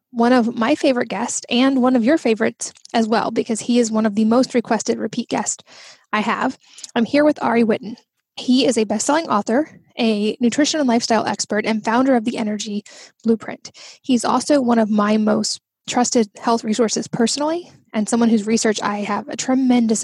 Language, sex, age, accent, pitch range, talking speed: English, female, 10-29, American, 220-255 Hz, 190 wpm